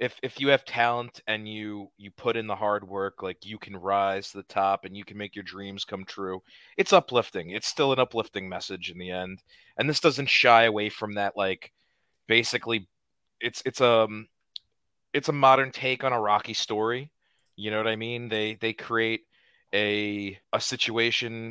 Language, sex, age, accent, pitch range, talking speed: English, male, 30-49, American, 100-115 Hz, 190 wpm